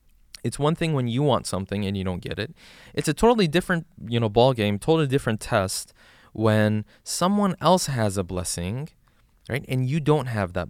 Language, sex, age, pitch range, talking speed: English, male, 20-39, 100-140 Hz, 195 wpm